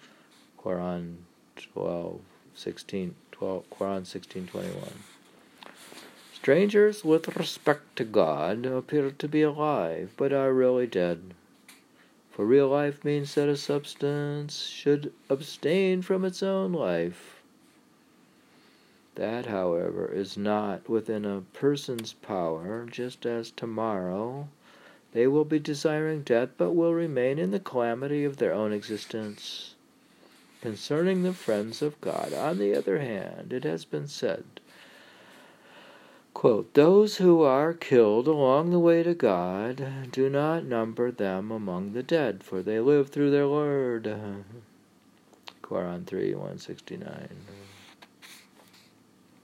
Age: 50-69